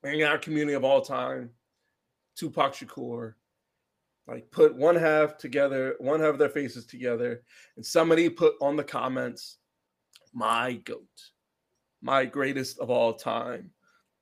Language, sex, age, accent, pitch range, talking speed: English, male, 30-49, American, 125-155 Hz, 135 wpm